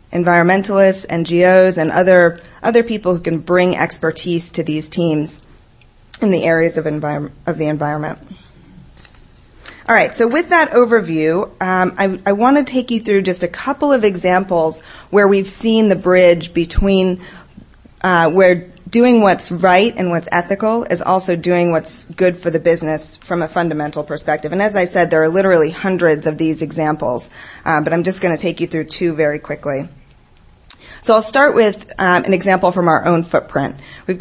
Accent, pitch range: American, 160-195 Hz